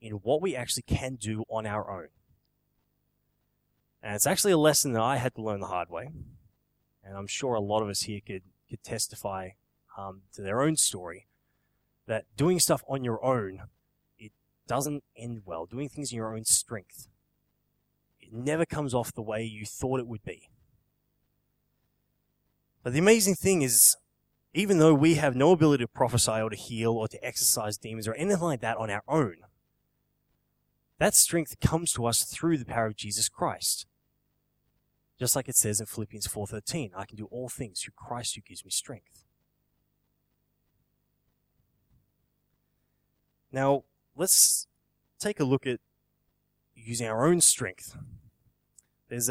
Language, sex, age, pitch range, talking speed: English, male, 20-39, 110-140 Hz, 160 wpm